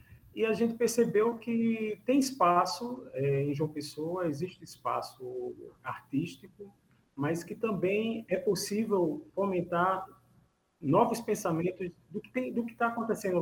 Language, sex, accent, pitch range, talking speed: Portuguese, male, Brazilian, 135-185 Hz, 115 wpm